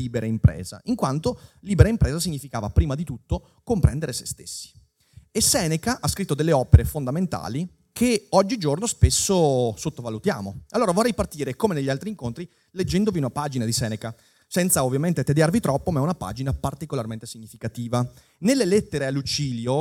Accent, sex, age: native, male, 30-49